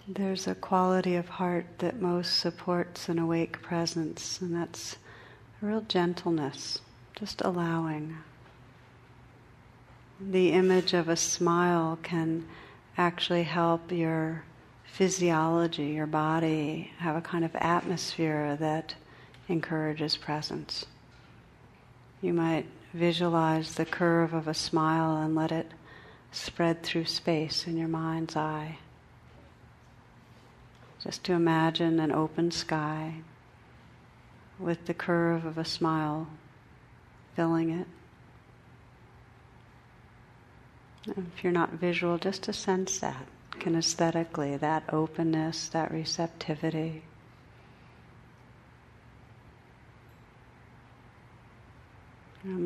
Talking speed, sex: 95 wpm, female